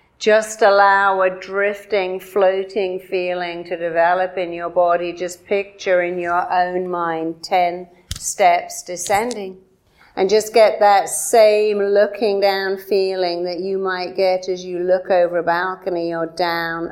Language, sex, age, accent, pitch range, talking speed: English, female, 50-69, British, 175-200 Hz, 140 wpm